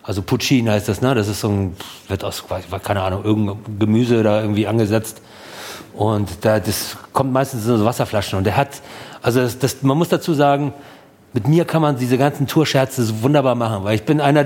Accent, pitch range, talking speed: German, 115-150 Hz, 210 wpm